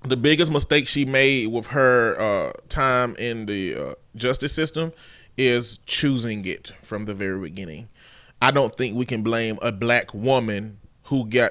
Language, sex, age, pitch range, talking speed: English, male, 20-39, 125-160 Hz, 160 wpm